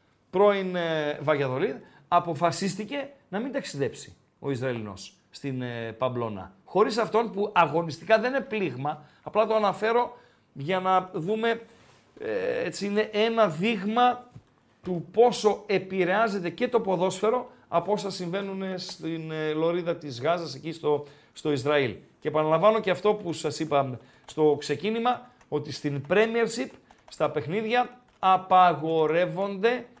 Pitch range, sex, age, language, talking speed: 155-215 Hz, male, 40-59, Greek, 125 wpm